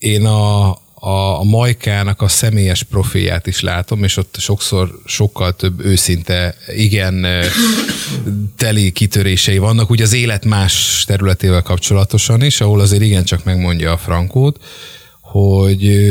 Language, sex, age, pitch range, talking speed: Hungarian, male, 30-49, 90-115 Hz, 125 wpm